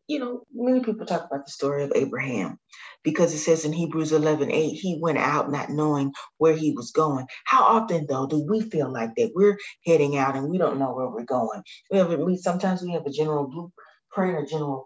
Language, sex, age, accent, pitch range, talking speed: English, female, 30-49, American, 150-185 Hz, 225 wpm